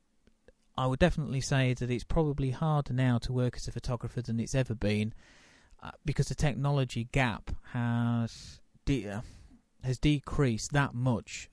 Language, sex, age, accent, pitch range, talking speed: English, male, 30-49, British, 110-130 Hz, 155 wpm